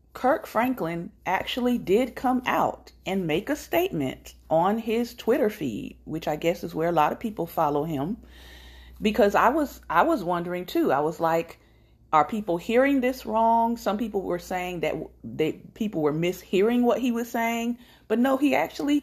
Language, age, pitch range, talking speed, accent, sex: English, 40-59, 155-230 Hz, 180 wpm, American, female